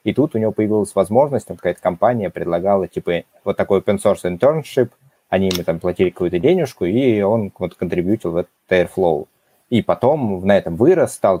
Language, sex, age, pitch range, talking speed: Russian, male, 20-39, 95-120 Hz, 180 wpm